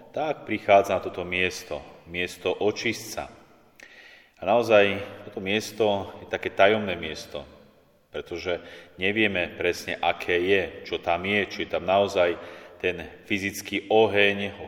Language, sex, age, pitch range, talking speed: Slovak, male, 30-49, 95-110 Hz, 125 wpm